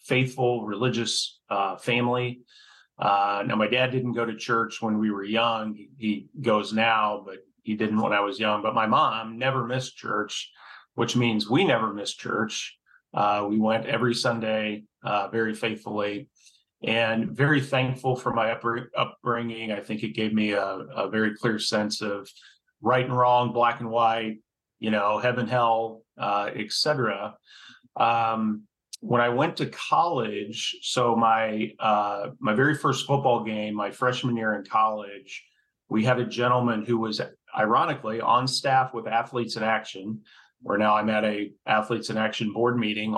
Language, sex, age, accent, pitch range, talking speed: English, male, 40-59, American, 110-125 Hz, 165 wpm